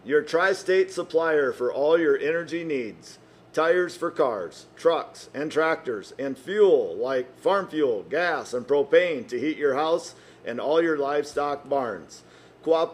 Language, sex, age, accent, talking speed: English, male, 50-69, American, 150 wpm